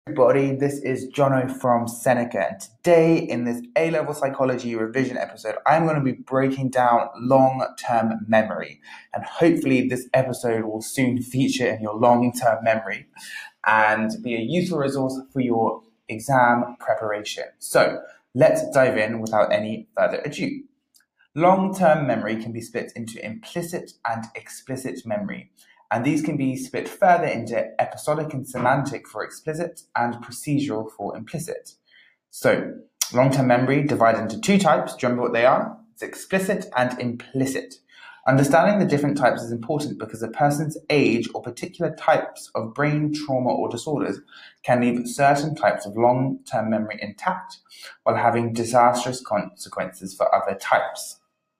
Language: English